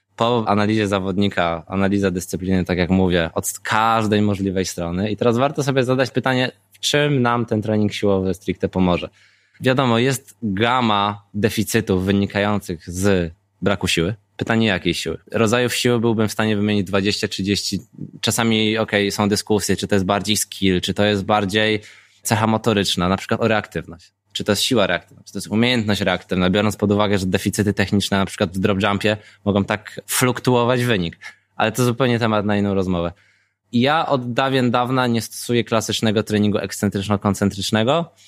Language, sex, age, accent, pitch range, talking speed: Polish, male, 20-39, native, 100-115 Hz, 160 wpm